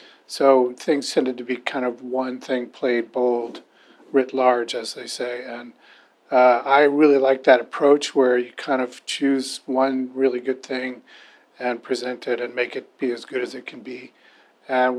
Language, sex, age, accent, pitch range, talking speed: English, male, 40-59, American, 125-140 Hz, 185 wpm